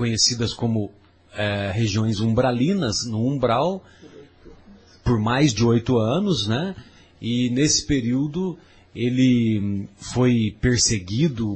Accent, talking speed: Brazilian, 100 wpm